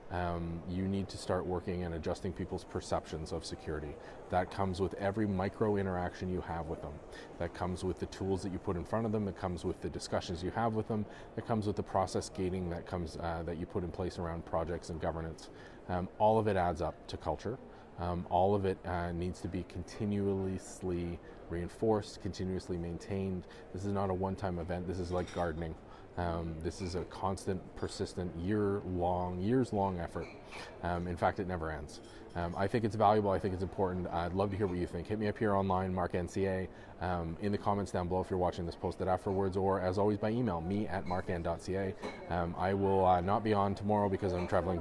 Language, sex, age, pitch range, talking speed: English, male, 30-49, 85-100 Hz, 210 wpm